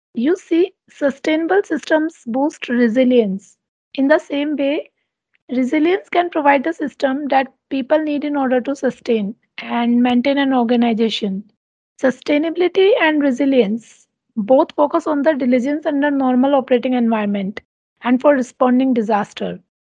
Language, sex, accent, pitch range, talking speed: English, female, Indian, 245-300 Hz, 125 wpm